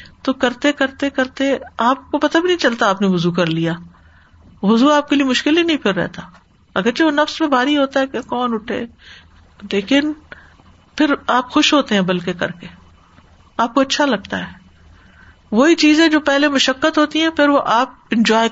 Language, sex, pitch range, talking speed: Urdu, female, 185-260 Hz, 190 wpm